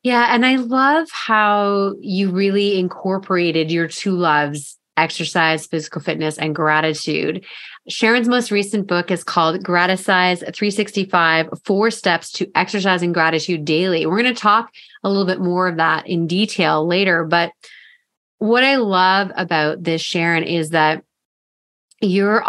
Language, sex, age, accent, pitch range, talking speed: English, female, 30-49, American, 165-215 Hz, 140 wpm